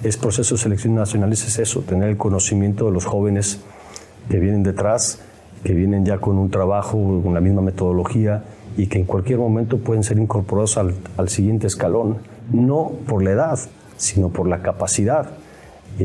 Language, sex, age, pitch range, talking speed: English, male, 40-59, 95-115 Hz, 175 wpm